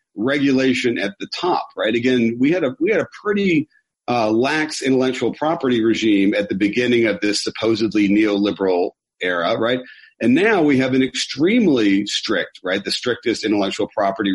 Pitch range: 110-135 Hz